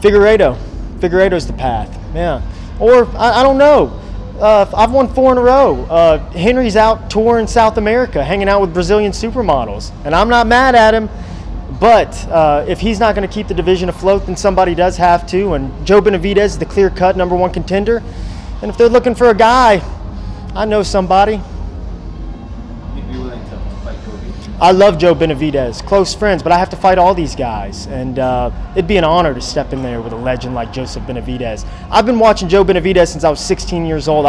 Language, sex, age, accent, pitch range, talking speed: English, male, 20-39, American, 140-200 Hz, 190 wpm